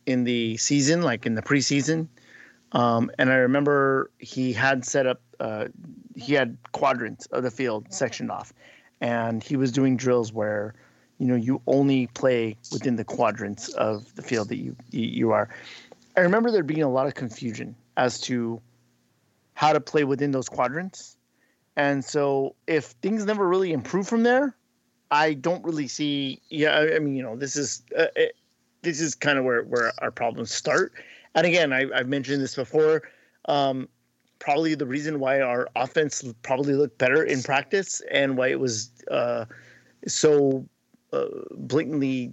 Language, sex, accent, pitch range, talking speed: English, male, American, 125-155 Hz, 170 wpm